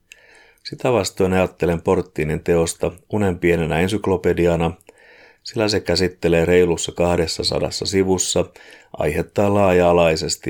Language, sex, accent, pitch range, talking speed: Finnish, male, native, 85-100 Hz, 90 wpm